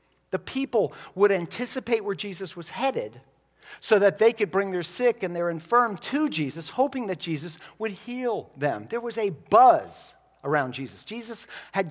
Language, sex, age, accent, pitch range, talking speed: English, male, 50-69, American, 155-215 Hz, 170 wpm